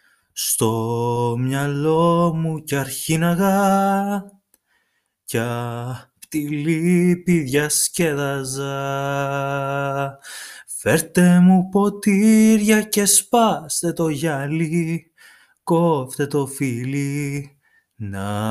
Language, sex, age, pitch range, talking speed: Greek, male, 20-39, 140-200 Hz, 60 wpm